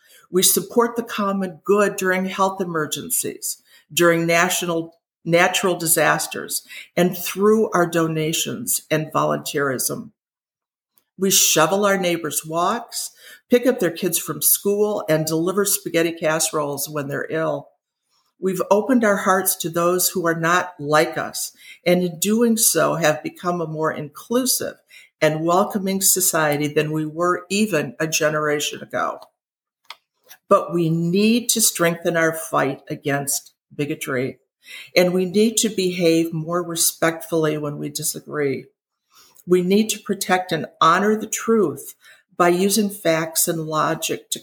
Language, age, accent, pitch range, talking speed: English, 50-69, American, 155-200 Hz, 135 wpm